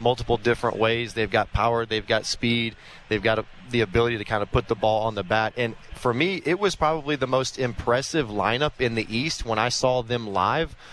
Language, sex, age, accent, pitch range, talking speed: English, male, 30-49, American, 115-140 Hz, 220 wpm